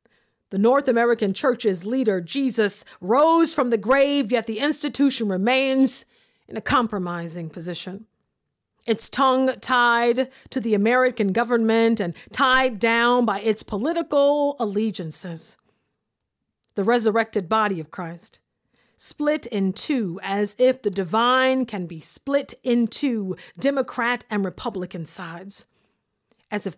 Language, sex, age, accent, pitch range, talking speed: English, female, 40-59, American, 190-245 Hz, 125 wpm